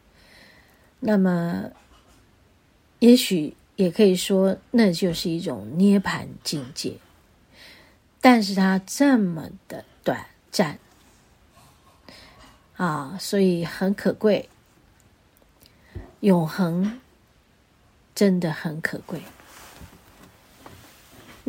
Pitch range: 165-210 Hz